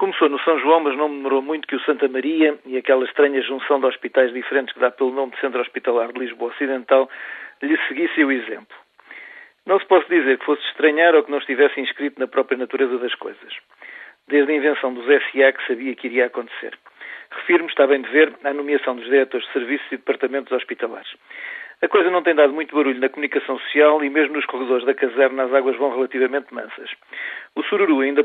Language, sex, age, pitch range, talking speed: Portuguese, male, 40-59, 130-150 Hz, 210 wpm